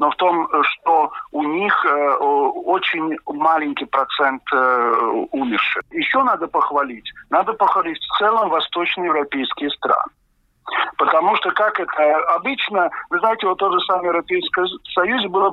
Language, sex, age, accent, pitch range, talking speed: Russian, male, 50-69, native, 150-220 Hz, 135 wpm